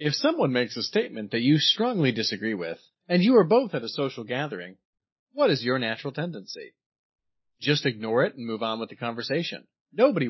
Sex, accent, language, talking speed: male, American, English, 190 wpm